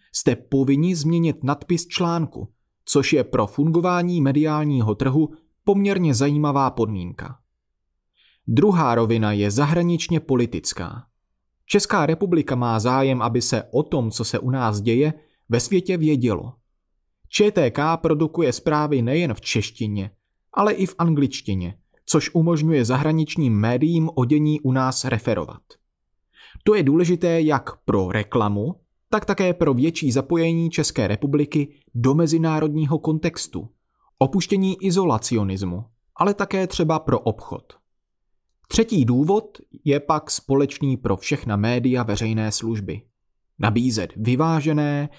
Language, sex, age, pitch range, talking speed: Czech, male, 30-49, 120-165 Hz, 120 wpm